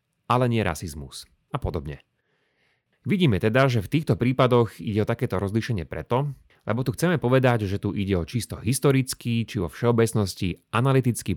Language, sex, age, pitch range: Slovak, male, 30-49, 95-135 Hz